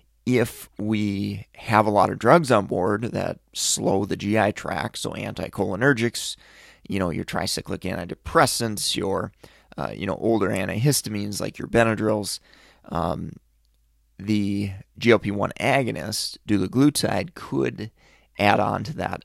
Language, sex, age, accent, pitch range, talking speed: English, male, 30-49, American, 95-115 Hz, 125 wpm